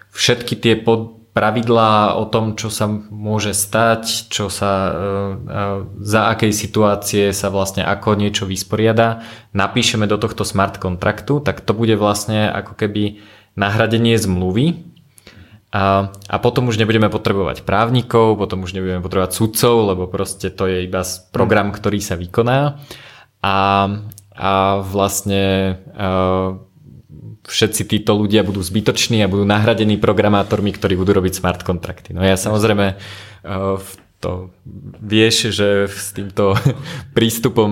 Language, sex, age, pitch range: Slovak, male, 20-39, 95-110 Hz